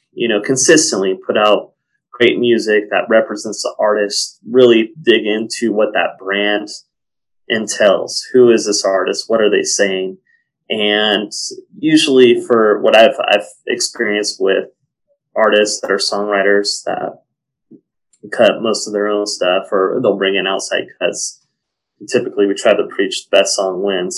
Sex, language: male, English